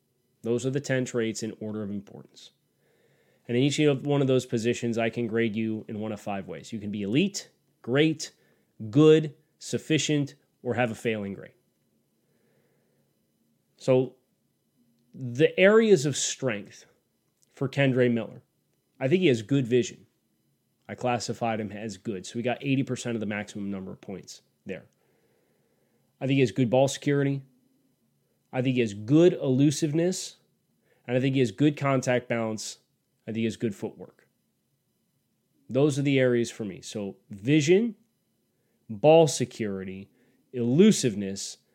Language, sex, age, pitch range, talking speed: English, male, 30-49, 115-135 Hz, 150 wpm